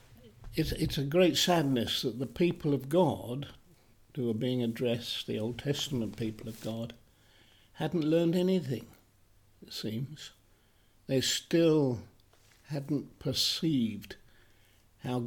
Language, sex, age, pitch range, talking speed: English, male, 60-79, 110-160 Hz, 115 wpm